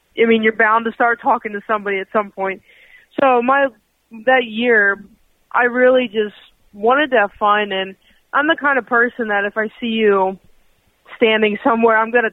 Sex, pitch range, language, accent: female, 200-235 Hz, English, American